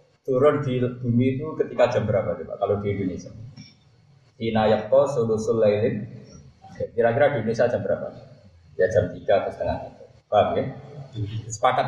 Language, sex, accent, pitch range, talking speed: Indonesian, male, native, 115-145 Hz, 135 wpm